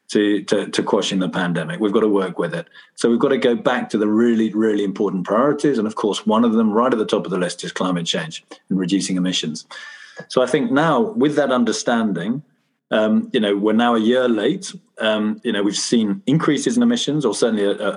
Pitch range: 105-145 Hz